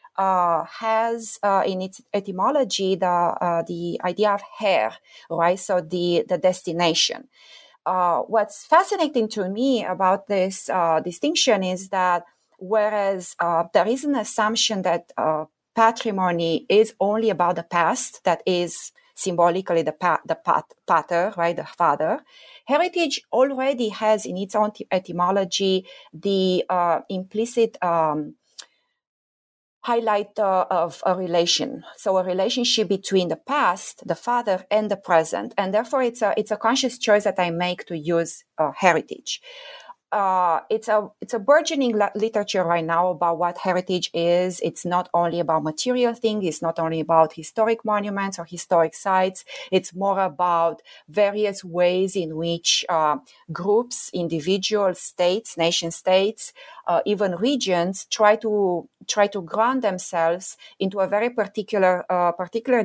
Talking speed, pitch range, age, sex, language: 145 wpm, 175-220 Hz, 30-49, female, English